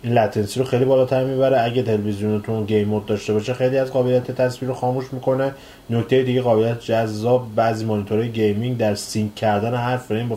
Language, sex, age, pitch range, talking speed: Persian, male, 30-49, 105-125 Hz, 185 wpm